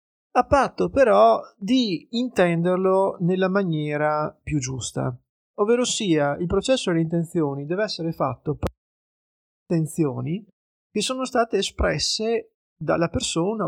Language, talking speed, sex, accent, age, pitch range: Italian, 120 wpm, male, native, 30-49, 150-205 Hz